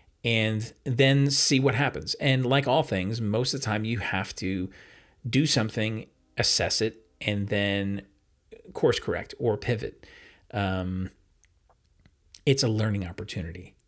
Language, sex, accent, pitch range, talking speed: English, male, American, 100-135 Hz, 135 wpm